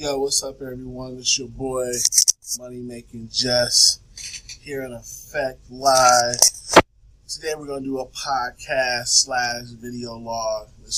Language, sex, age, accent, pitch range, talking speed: English, male, 20-39, American, 110-125 Hz, 130 wpm